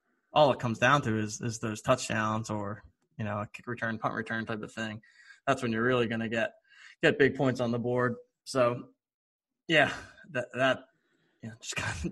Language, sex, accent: English, male, American